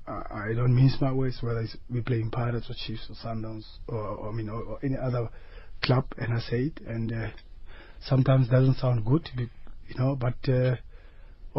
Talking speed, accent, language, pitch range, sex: 180 wpm, South African, English, 110-130 Hz, male